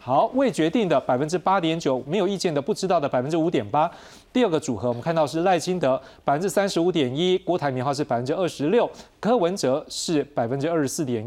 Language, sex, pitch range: Chinese, male, 130-165 Hz